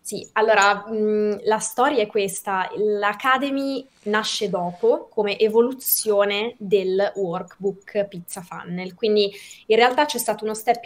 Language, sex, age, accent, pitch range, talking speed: Italian, female, 20-39, native, 195-245 Hz, 120 wpm